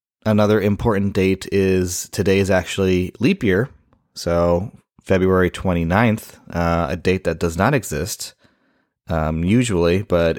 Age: 30-49